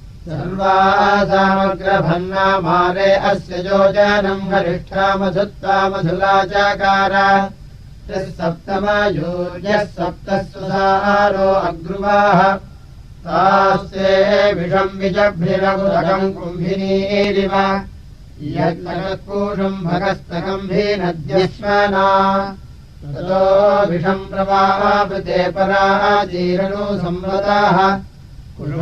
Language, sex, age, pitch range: Russian, male, 60-79, 180-195 Hz